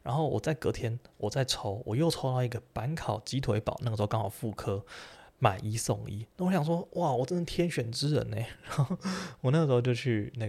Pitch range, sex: 105-125 Hz, male